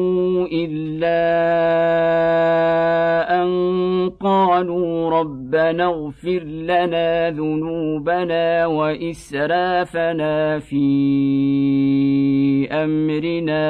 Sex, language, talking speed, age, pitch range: male, Arabic, 45 wpm, 50-69, 150-180 Hz